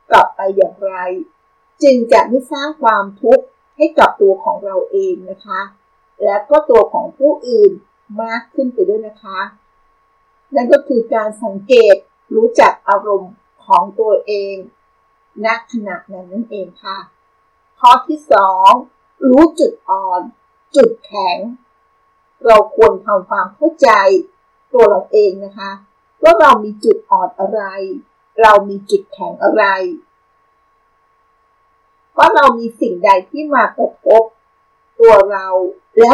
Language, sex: Thai, female